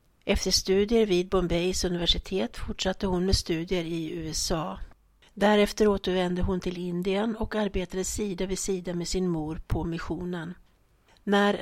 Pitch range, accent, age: 170-195 Hz, native, 60-79